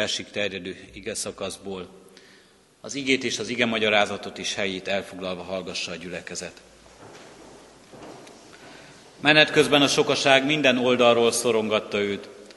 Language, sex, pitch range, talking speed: Hungarian, male, 110-130 Hz, 105 wpm